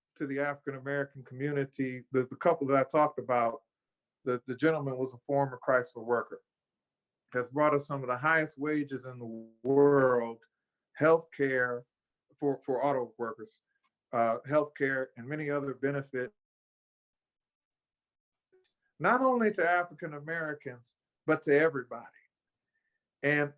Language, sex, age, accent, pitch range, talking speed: English, male, 50-69, American, 130-160 Hz, 135 wpm